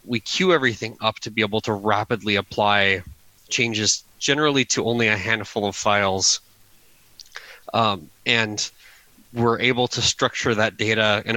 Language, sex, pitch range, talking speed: English, male, 105-115 Hz, 145 wpm